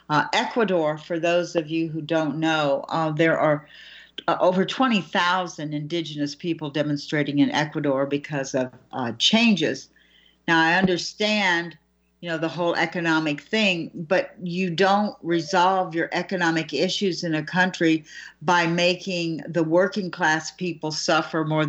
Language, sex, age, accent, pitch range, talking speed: English, female, 60-79, American, 145-175 Hz, 140 wpm